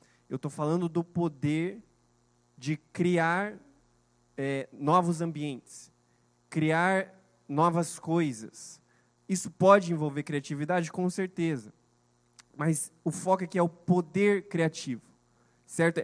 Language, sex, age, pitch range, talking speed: Portuguese, male, 20-39, 145-185 Hz, 105 wpm